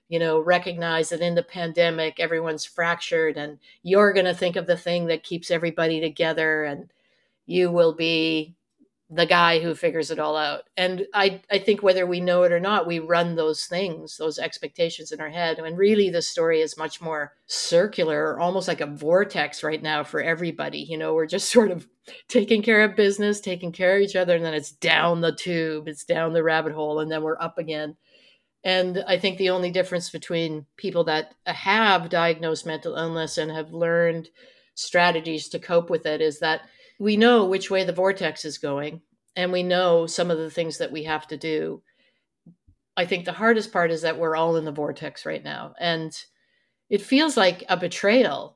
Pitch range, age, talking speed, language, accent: 160-195 Hz, 50-69, 200 wpm, English, American